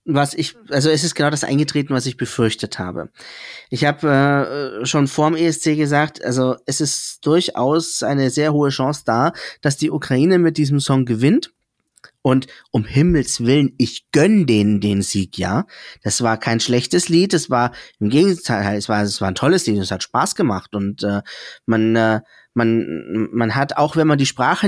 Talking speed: 185 wpm